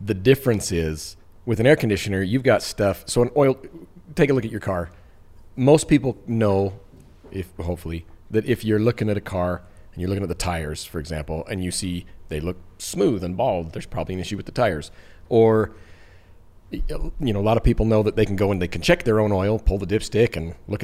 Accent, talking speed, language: American, 225 wpm, English